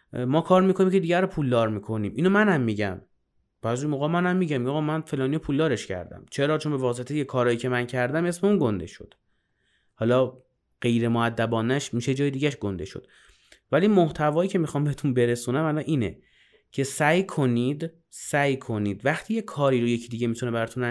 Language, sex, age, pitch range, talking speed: Persian, male, 30-49, 120-165 Hz, 170 wpm